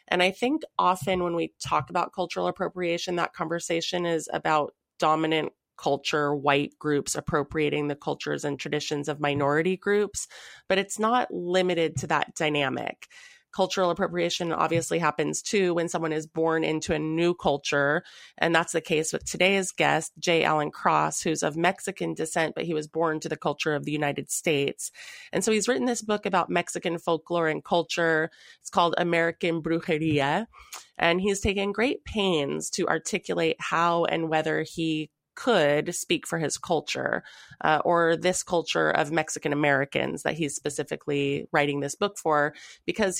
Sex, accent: female, American